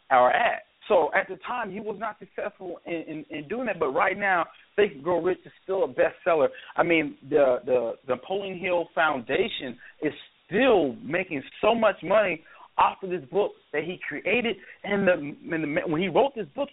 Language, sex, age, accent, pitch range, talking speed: English, male, 40-59, American, 165-220 Hz, 195 wpm